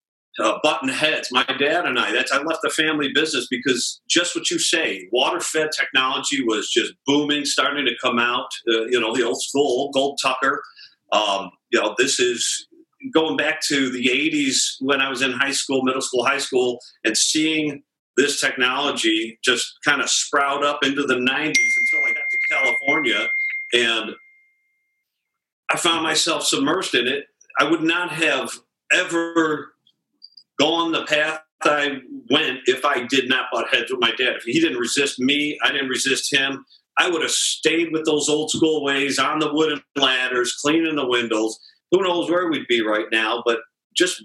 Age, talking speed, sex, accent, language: 50-69, 180 wpm, male, American, English